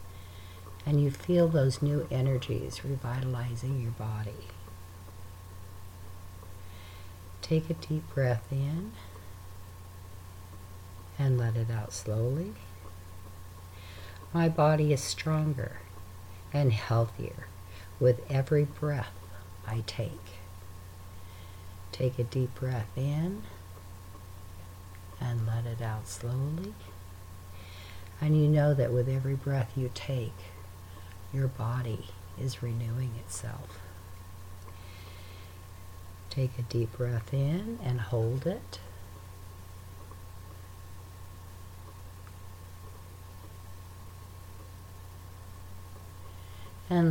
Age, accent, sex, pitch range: 60-79, American, female, 90-120 Hz